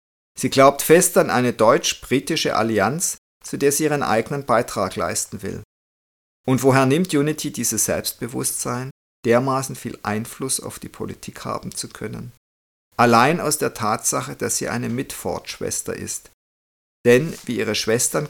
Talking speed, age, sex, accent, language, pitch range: 140 wpm, 50-69, male, German, German, 105-135 Hz